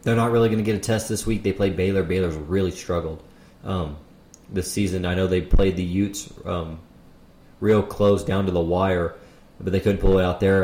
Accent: American